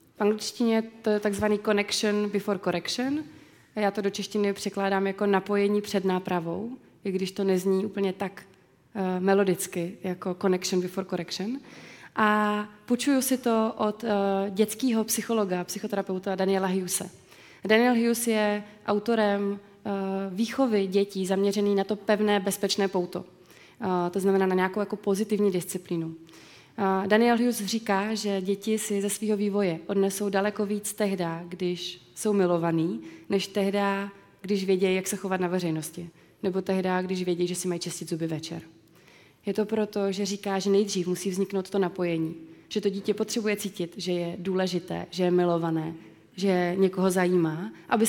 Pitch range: 185-210 Hz